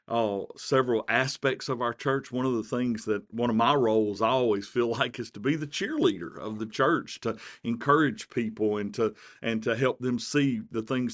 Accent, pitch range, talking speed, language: American, 110-130 Hz, 210 wpm, English